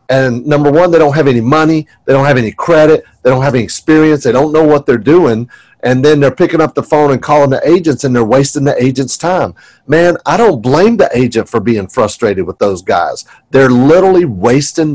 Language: English